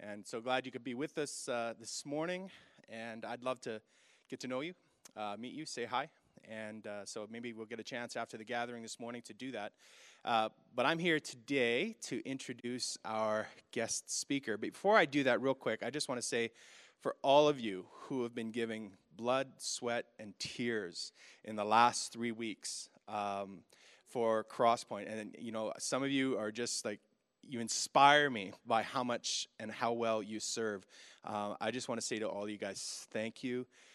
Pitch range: 110-130 Hz